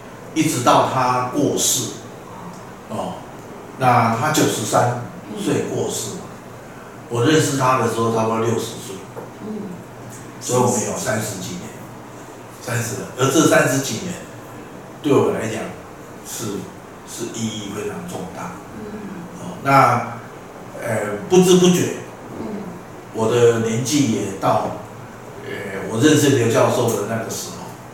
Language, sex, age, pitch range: Chinese, male, 50-69, 110-135 Hz